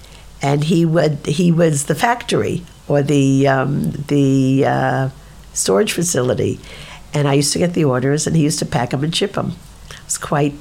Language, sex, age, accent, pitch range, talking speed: English, female, 50-69, American, 140-165 Hz, 180 wpm